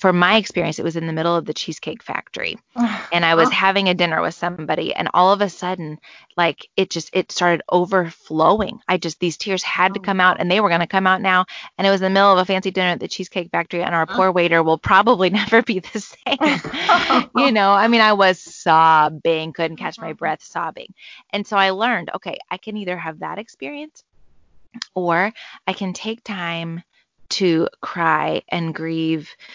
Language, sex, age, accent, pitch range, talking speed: English, female, 20-39, American, 170-205 Hz, 210 wpm